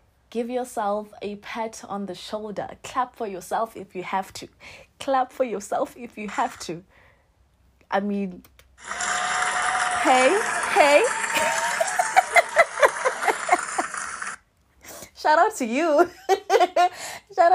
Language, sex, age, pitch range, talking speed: English, female, 20-39, 185-245 Hz, 105 wpm